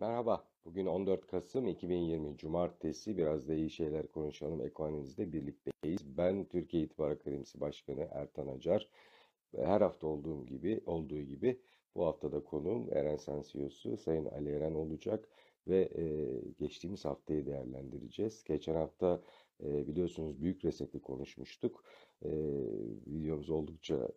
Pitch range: 75-85 Hz